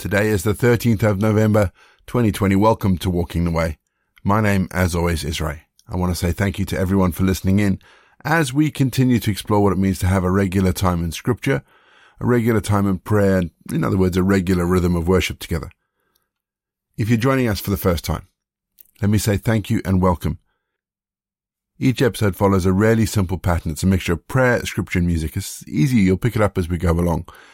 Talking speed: 215 wpm